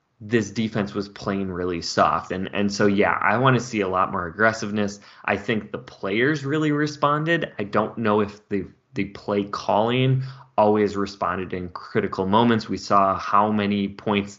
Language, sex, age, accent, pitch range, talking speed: English, male, 20-39, American, 95-120 Hz, 170 wpm